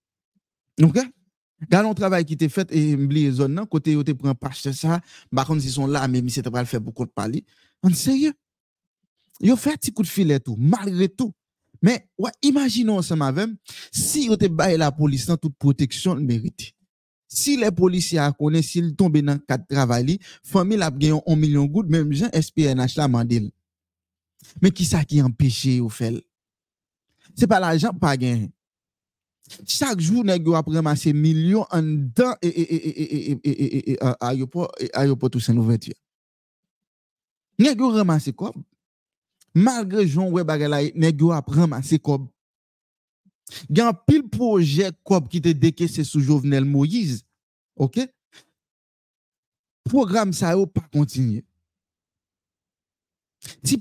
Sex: male